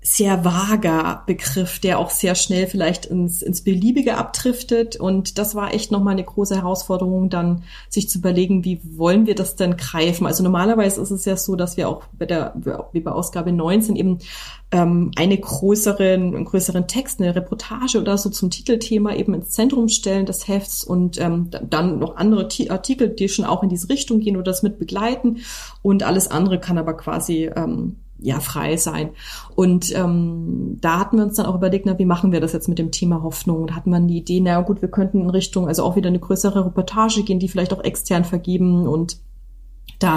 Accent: German